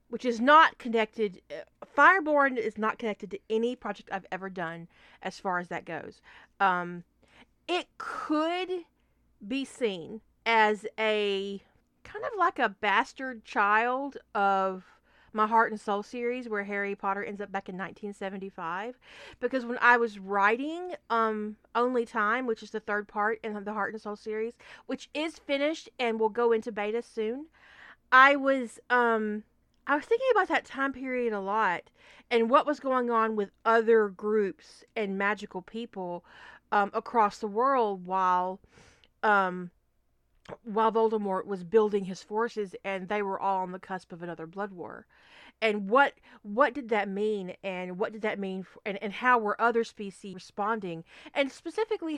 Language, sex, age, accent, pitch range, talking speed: English, female, 40-59, American, 200-245 Hz, 160 wpm